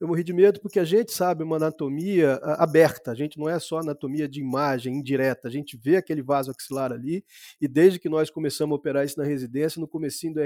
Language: Portuguese